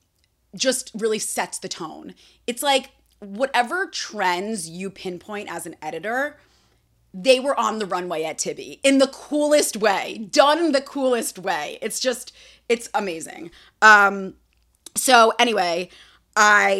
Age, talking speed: 30-49, 130 wpm